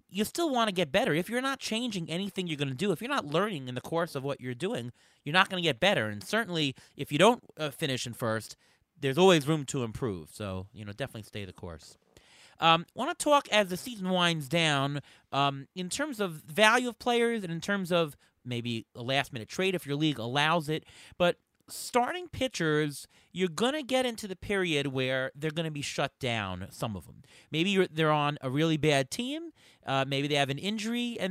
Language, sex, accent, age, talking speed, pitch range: English, male, American, 30-49, 220 wpm, 140-195 Hz